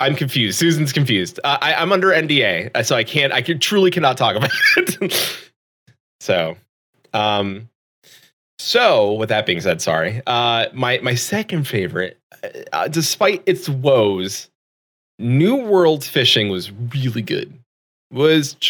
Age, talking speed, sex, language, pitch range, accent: 20-39, 140 wpm, male, English, 100-150 Hz, American